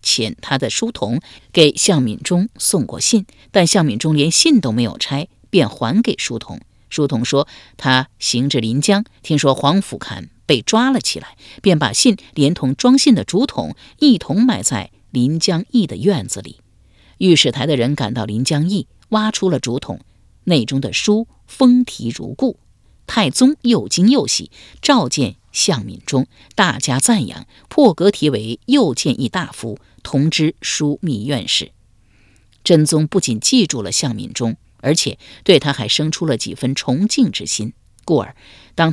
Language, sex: Chinese, female